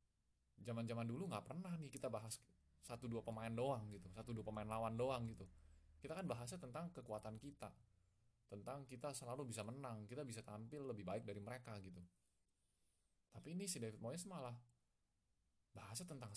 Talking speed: 160 wpm